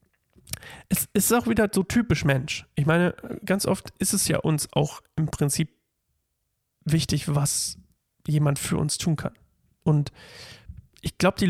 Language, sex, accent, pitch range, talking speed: German, male, German, 140-165 Hz, 150 wpm